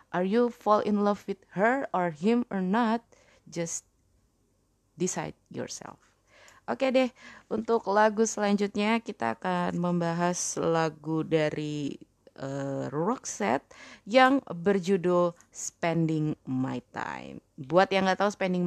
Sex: female